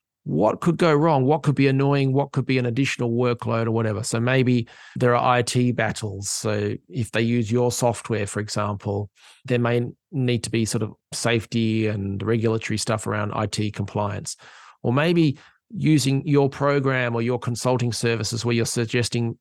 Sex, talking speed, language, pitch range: male, 175 wpm, English, 110-130 Hz